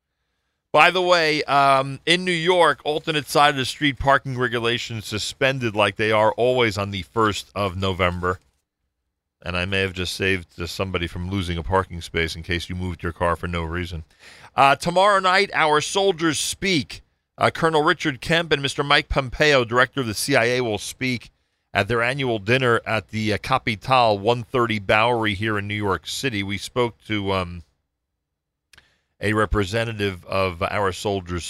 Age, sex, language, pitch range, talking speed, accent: 40-59, male, English, 85-125 Hz, 170 wpm, American